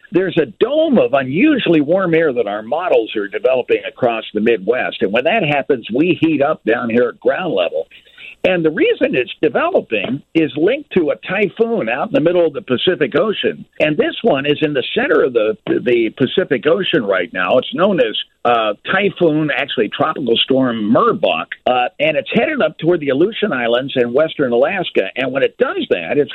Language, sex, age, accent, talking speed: English, male, 60-79, American, 195 wpm